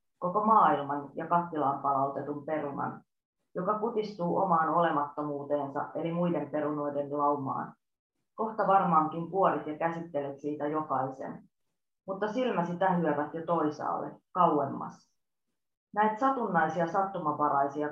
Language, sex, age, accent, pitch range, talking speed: Finnish, female, 30-49, native, 145-190 Hz, 100 wpm